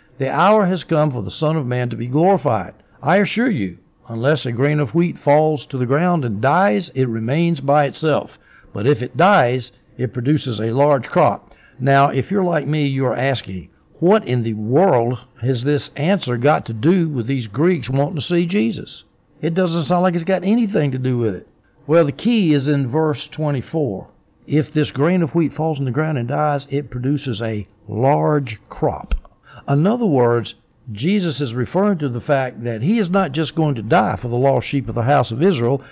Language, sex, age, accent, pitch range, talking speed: English, male, 60-79, American, 125-160 Hz, 205 wpm